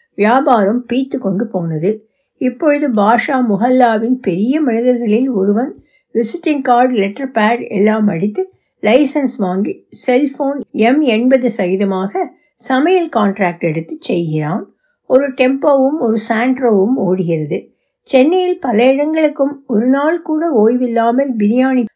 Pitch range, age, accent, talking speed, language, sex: 195-255 Hz, 60-79, native, 90 wpm, Tamil, female